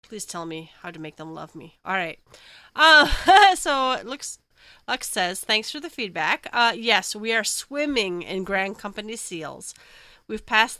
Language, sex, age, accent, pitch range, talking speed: English, female, 30-49, American, 190-275 Hz, 170 wpm